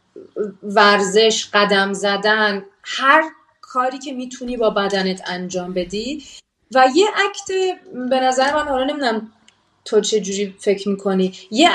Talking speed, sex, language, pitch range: 125 wpm, female, Persian, 195-250 Hz